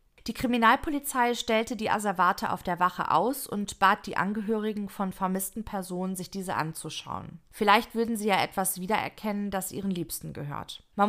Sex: female